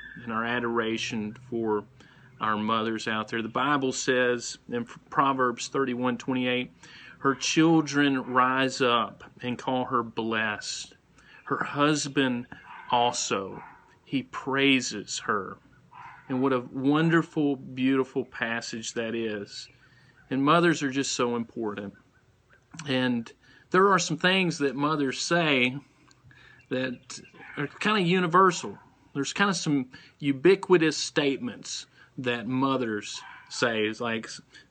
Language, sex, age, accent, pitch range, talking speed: English, male, 40-59, American, 120-145 Hz, 120 wpm